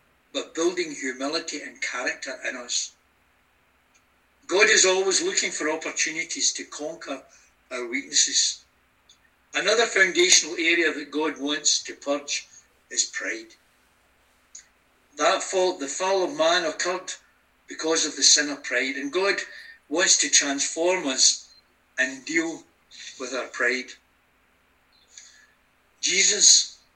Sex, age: male, 60-79